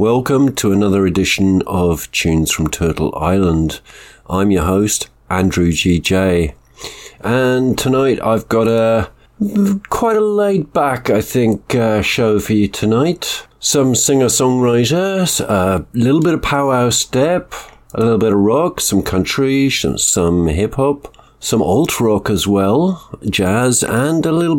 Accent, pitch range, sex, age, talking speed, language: British, 95-125 Hz, male, 50-69, 145 wpm, English